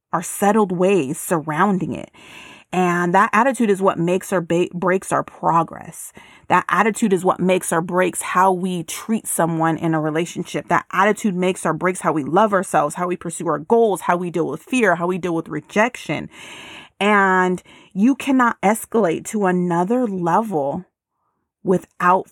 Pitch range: 170-205 Hz